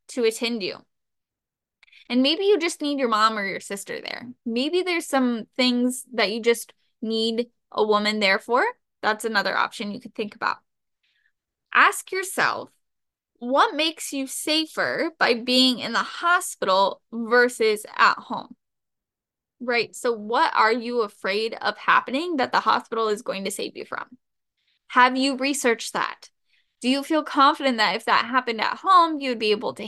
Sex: female